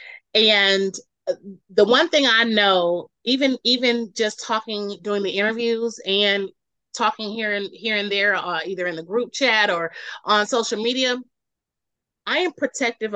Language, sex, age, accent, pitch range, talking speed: English, female, 30-49, American, 185-245 Hz, 150 wpm